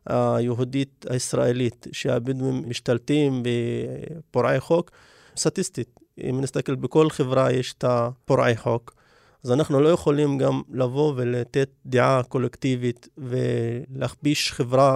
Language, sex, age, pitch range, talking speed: Hebrew, male, 30-49, 125-145 Hz, 105 wpm